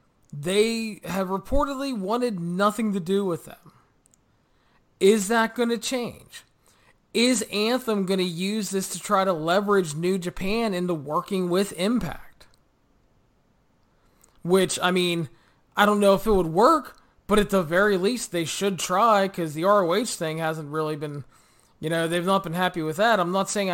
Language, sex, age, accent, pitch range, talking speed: English, male, 20-39, American, 180-235 Hz, 165 wpm